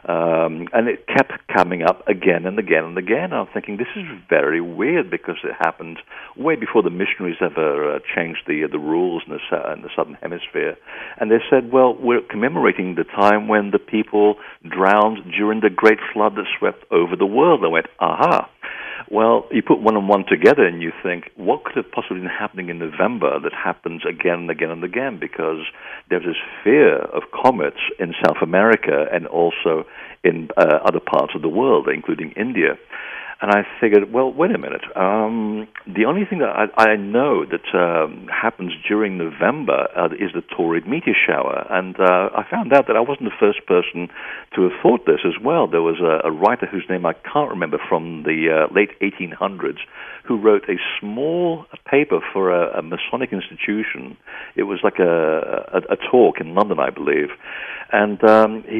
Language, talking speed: English, 190 wpm